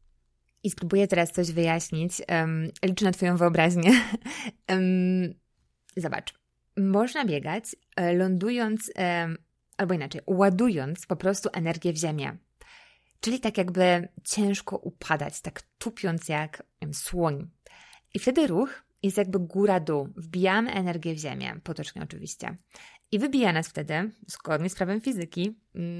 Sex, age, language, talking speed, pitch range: female, 20-39, Polish, 125 wpm, 170-205 Hz